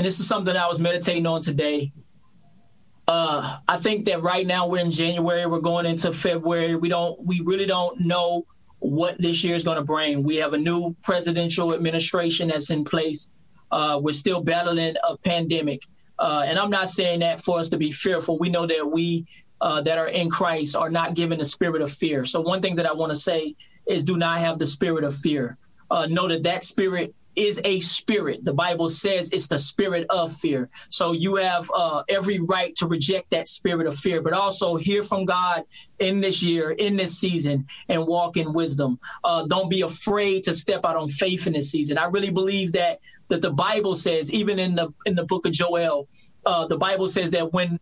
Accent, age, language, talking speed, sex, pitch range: American, 20-39, English, 210 wpm, male, 165-185 Hz